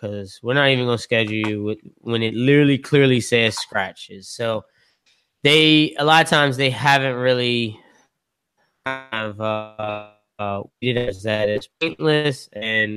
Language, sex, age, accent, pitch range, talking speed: English, male, 20-39, American, 115-155 Hz, 135 wpm